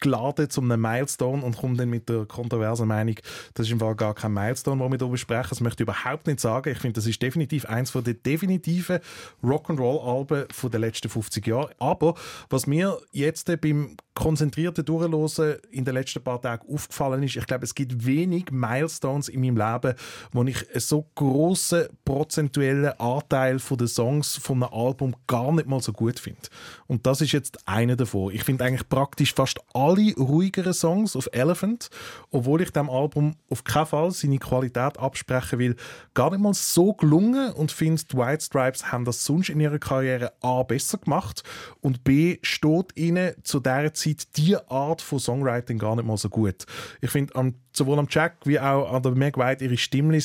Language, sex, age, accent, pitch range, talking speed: German, male, 30-49, Austrian, 125-155 Hz, 190 wpm